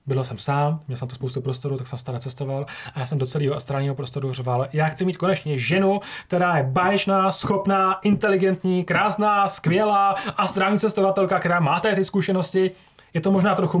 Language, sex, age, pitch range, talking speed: Czech, male, 30-49, 140-175 Hz, 185 wpm